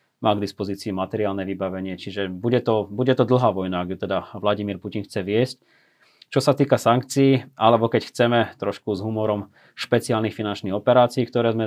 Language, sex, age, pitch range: Slovak, male, 20-39, 100-120 Hz